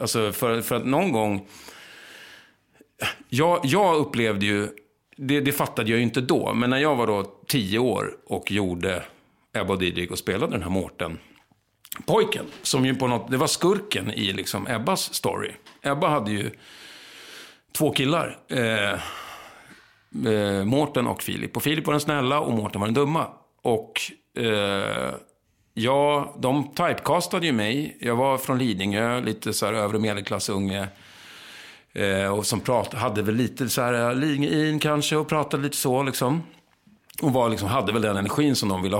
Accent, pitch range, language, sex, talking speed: Swedish, 105-140 Hz, English, male, 165 wpm